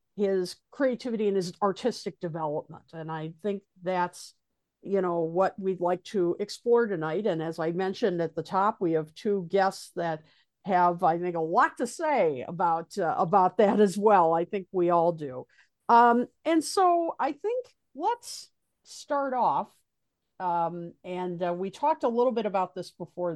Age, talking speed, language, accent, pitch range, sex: 50-69, 170 wpm, English, American, 170-205 Hz, female